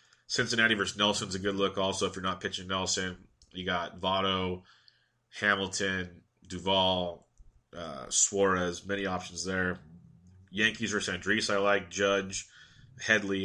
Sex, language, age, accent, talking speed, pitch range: male, English, 30-49, American, 130 wpm, 95-115 Hz